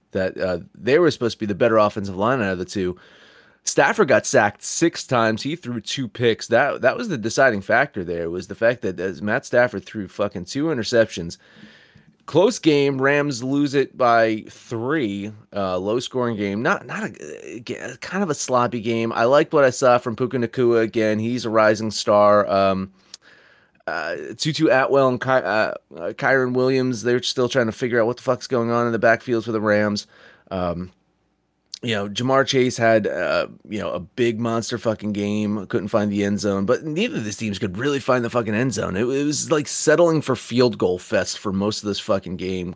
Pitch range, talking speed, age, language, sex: 105-125 Hz, 205 wpm, 30-49, English, male